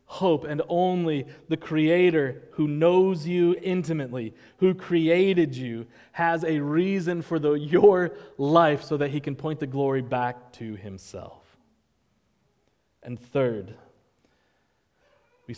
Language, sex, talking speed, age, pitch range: English, male, 120 wpm, 20-39, 125-155 Hz